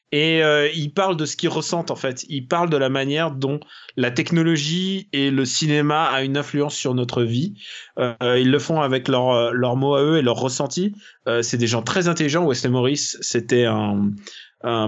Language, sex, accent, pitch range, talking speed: French, male, French, 120-150 Hz, 205 wpm